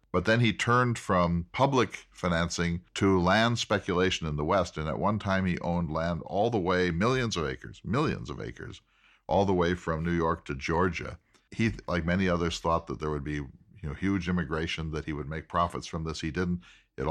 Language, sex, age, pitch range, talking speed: English, male, 50-69, 80-105 Hz, 210 wpm